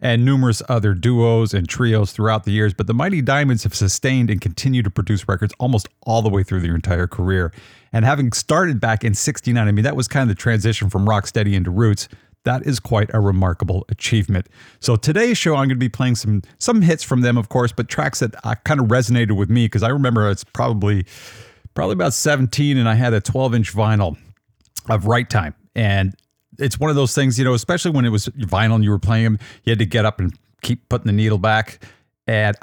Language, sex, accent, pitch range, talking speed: English, male, American, 105-125 Hz, 225 wpm